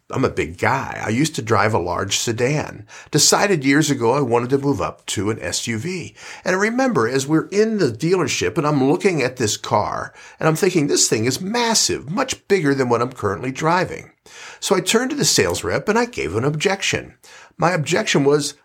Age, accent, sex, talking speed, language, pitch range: 50-69, American, male, 210 wpm, English, 120-175 Hz